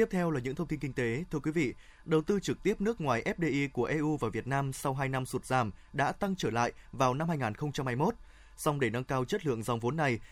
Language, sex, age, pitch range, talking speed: Vietnamese, male, 20-39, 130-165 Hz, 255 wpm